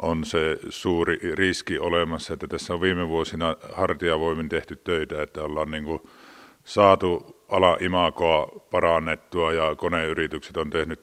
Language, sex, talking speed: Finnish, male, 125 wpm